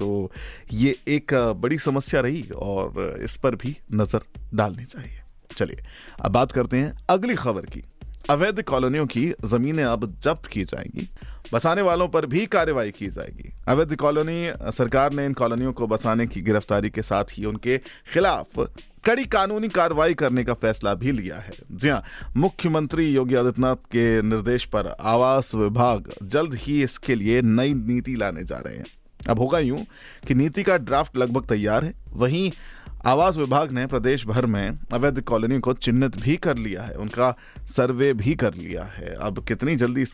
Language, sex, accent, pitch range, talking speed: Hindi, male, native, 110-145 Hz, 170 wpm